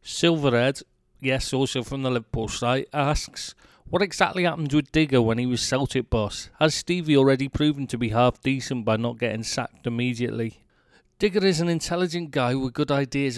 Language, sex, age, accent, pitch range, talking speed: English, male, 40-59, British, 120-150 Hz, 175 wpm